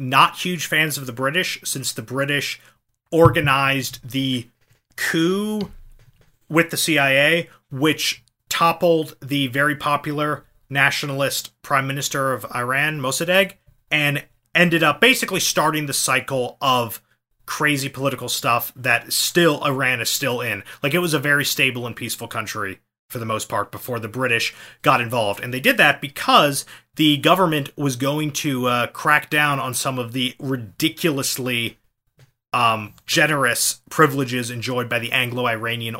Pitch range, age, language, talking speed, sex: 120-150 Hz, 30-49, English, 145 wpm, male